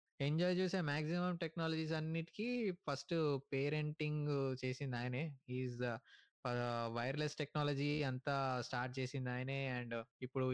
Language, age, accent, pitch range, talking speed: Telugu, 20-39, native, 130-155 Hz, 100 wpm